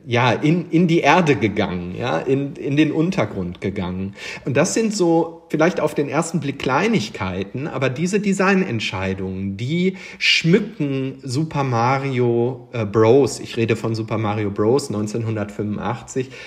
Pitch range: 110-140 Hz